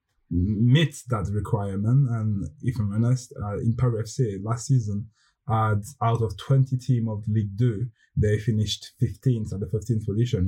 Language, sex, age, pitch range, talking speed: English, male, 20-39, 95-120 Hz, 160 wpm